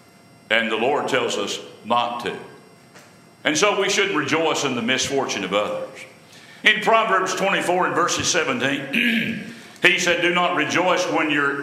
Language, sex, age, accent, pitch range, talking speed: English, male, 60-79, American, 150-200 Hz, 155 wpm